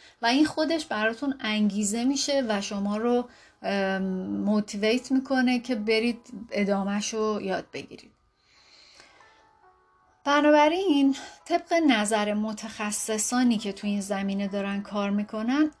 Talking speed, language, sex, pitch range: 105 wpm, Persian, female, 205-245 Hz